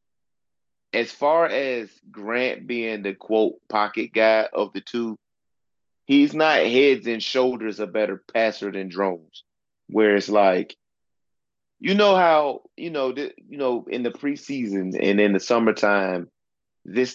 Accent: American